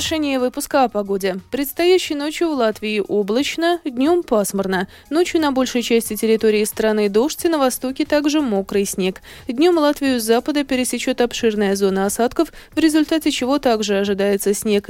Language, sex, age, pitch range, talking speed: Russian, female, 20-39, 200-290 Hz, 150 wpm